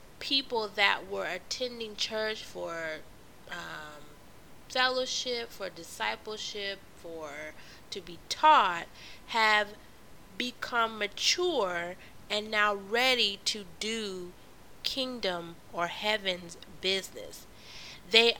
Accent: American